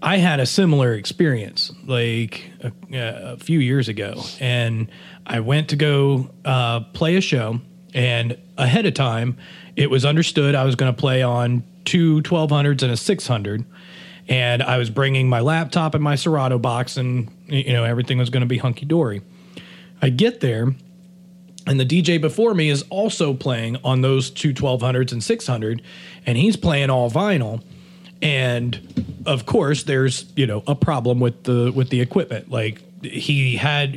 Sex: male